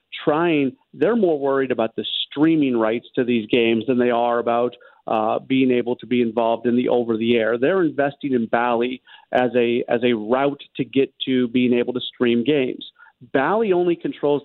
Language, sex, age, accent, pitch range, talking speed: English, male, 40-59, American, 120-135 Hz, 185 wpm